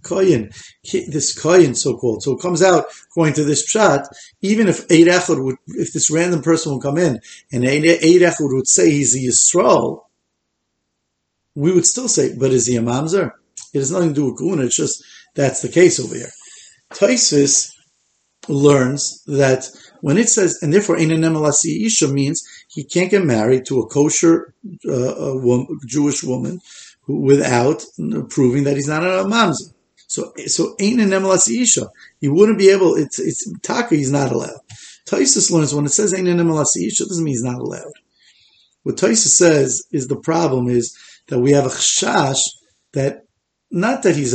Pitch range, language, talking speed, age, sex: 130-180 Hz, English, 175 wpm, 50-69, male